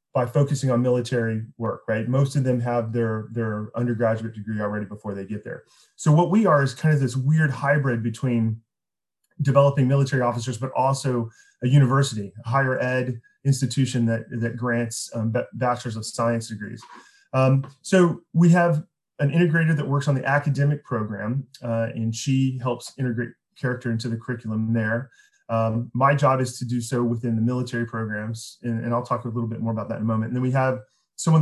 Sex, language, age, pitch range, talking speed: male, English, 30-49, 115-140 Hz, 195 wpm